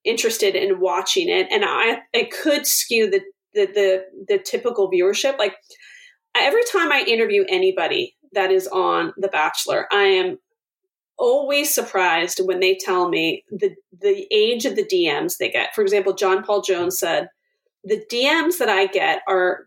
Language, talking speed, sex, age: English, 165 wpm, female, 30-49